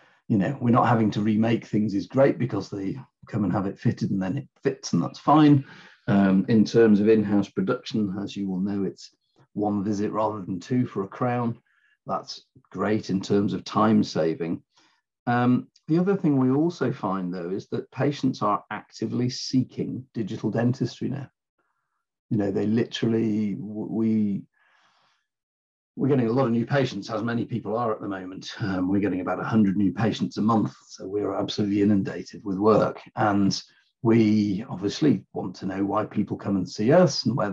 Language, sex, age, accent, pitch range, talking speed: English, male, 40-59, British, 100-125 Hz, 185 wpm